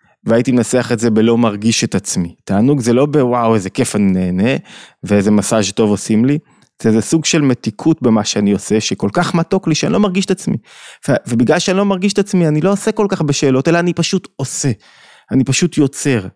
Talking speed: 210 wpm